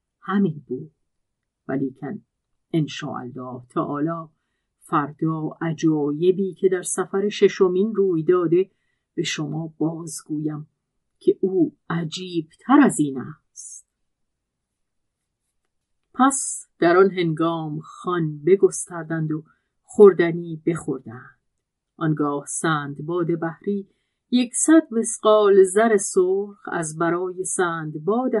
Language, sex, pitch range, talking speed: Persian, female, 160-205 Hz, 95 wpm